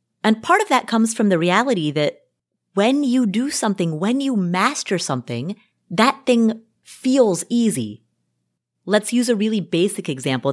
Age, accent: 30-49, American